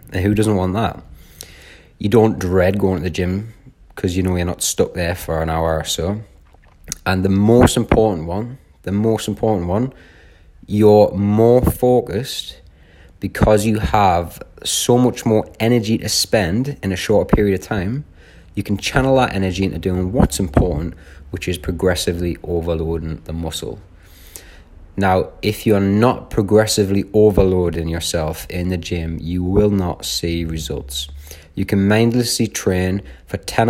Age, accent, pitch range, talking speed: 30-49, British, 85-105 Hz, 155 wpm